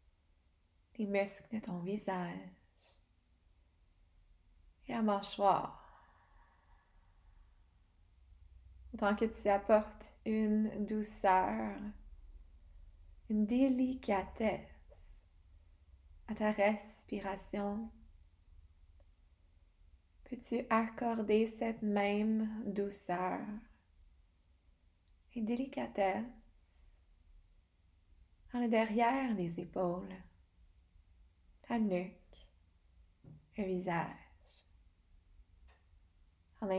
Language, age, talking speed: English, 20-39, 55 wpm